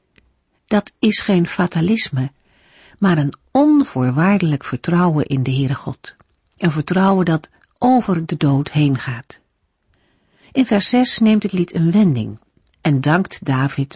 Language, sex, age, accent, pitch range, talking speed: Dutch, female, 50-69, Dutch, 145-210 Hz, 135 wpm